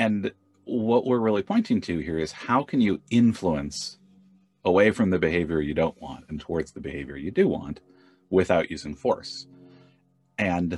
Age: 30-49